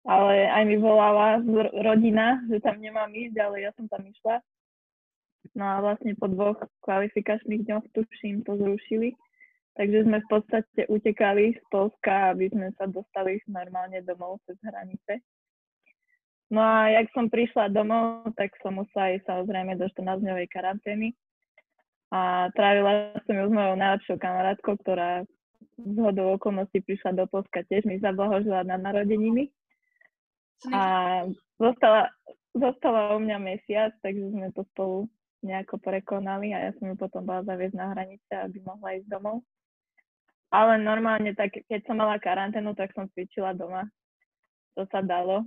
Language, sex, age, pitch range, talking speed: Slovak, female, 20-39, 195-220 Hz, 145 wpm